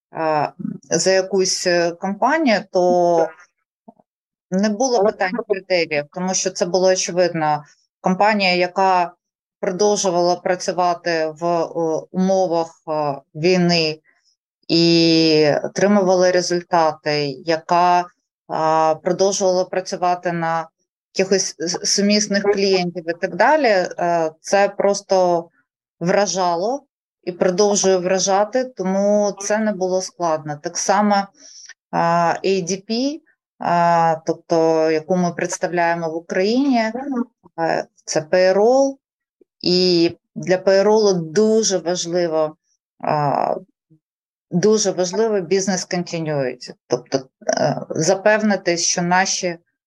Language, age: Ukrainian, 20-39